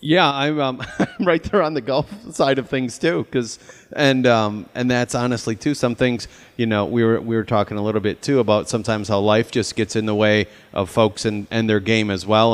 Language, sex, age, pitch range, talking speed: English, male, 30-49, 110-135 Hz, 235 wpm